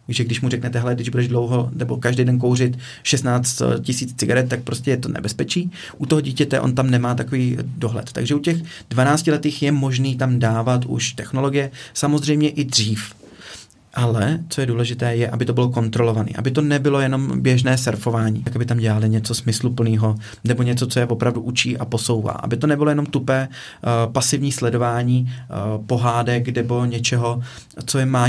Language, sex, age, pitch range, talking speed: Czech, male, 30-49, 120-135 Hz, 180 wpm